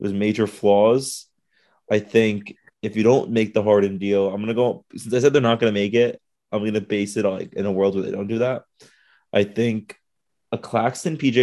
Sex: male